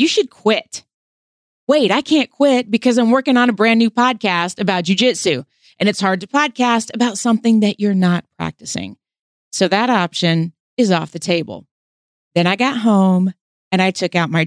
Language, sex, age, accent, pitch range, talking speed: English, female, 30-49, American, 175-235 Hz, 185 wpm